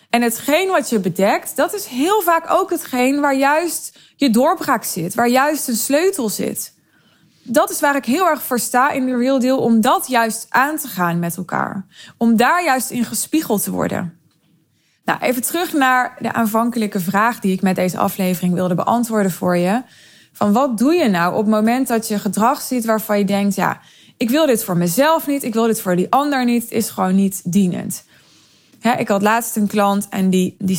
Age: 20-39